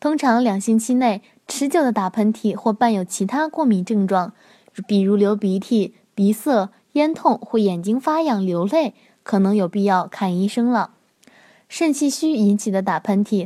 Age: 20-39